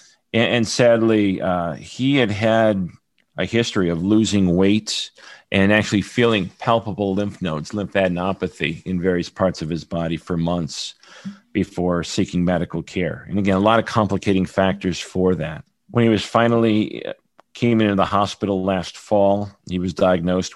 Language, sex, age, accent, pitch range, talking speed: English, male, 40-59, American, 90-110 Hz, 150 wpm